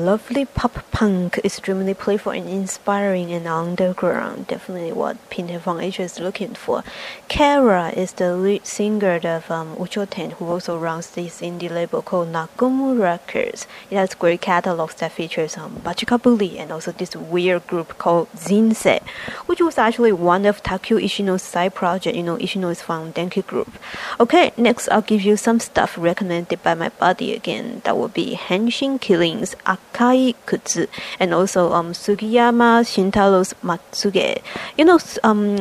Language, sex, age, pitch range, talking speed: English, female, 20-39, 175-215 Hz, 160 wpm